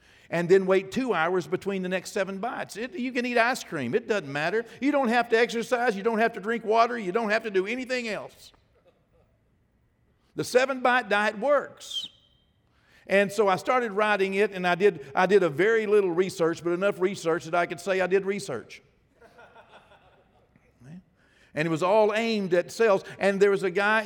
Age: 50-69